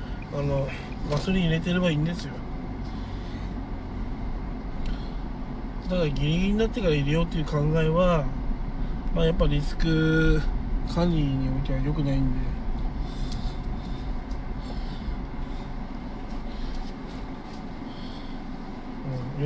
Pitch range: 135-165 Hz